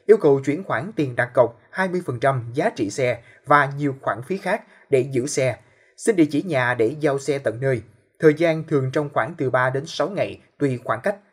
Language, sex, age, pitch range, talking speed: Vietnamese, male, 20-39, 130-170 Hz, 215 wpm